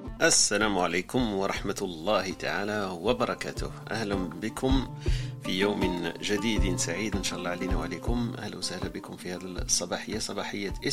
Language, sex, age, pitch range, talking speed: Arabic, male, 40-59, 100-125 Hz, 130 wpm